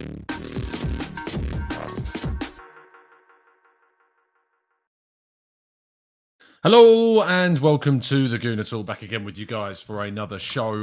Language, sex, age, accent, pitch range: English, male, 20-39, British, 105-140 Hz